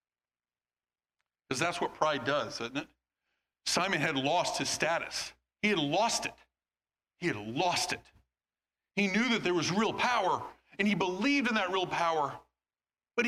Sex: male